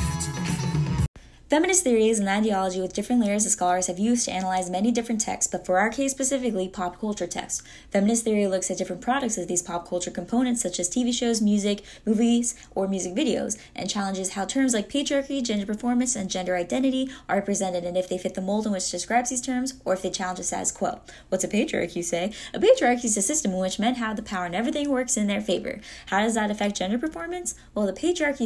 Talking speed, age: 230 wpm, 10-29